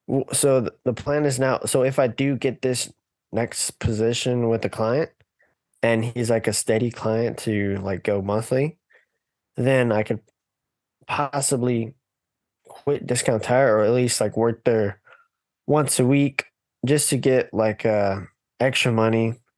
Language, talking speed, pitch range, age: English, 150 wpm, 105-130 Hz, 20-39